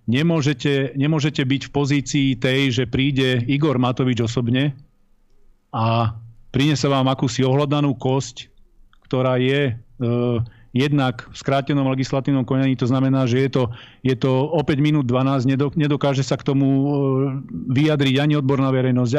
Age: 40-59